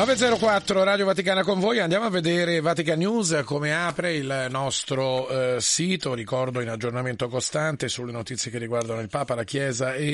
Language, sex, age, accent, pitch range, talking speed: Italian, male, 40-59, native, 135-160 Hz, 165 wpm